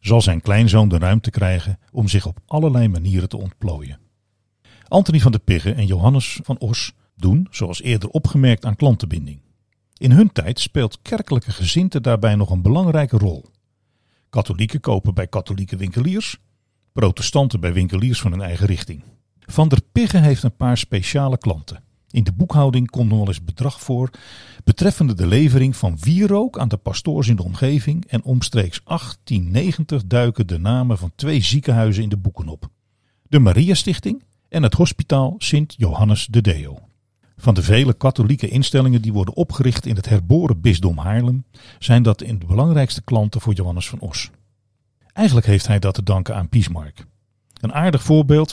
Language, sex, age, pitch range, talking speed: Dutch, male, 40-59, 100-130 Hz, 165 wpm